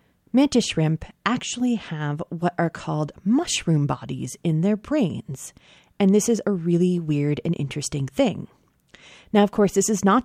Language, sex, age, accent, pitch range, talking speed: English, female, 30-49, American, 150-205 Hz, 160 wpm